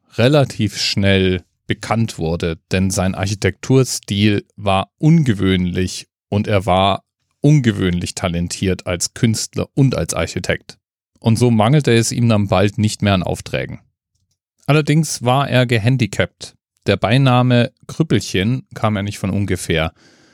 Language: German